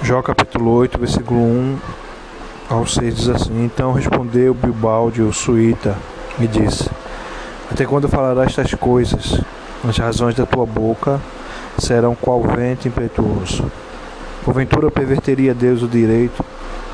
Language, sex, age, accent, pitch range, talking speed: Portuguese, male, 20-39, Brazilian, 110-125 Hz, 125 wpm